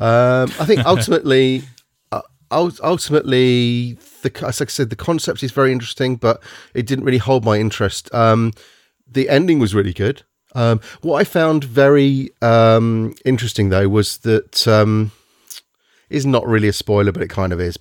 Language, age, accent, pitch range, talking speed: English, 30-49, British, 105-150 Hz, 170 wpm